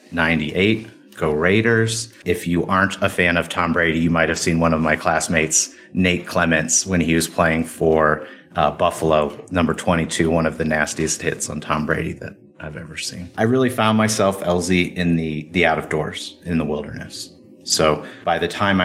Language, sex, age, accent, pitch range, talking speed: English, male, 30-49, American, 80-95 Hz, 190 wpm